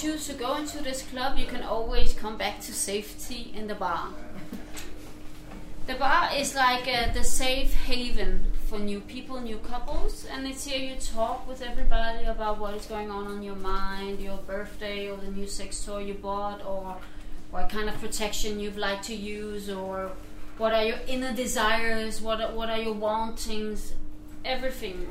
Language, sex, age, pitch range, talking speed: Danish, female, 30-49, 205-255 Hz, 180 wpm